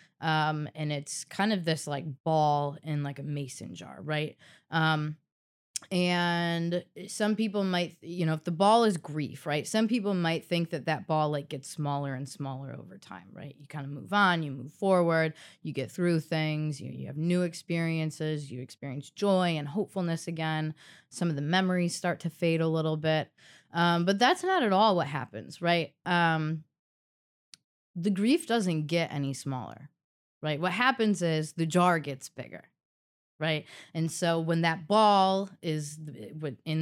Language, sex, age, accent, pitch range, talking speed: English, female, 20-39, American, 145-170 Hz, 175 wpm